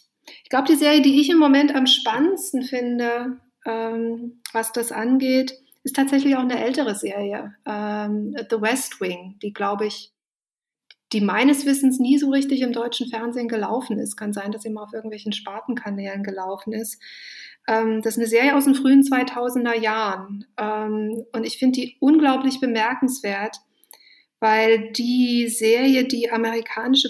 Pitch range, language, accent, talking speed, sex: 215-250 Hz, German, German, 155 wpm, female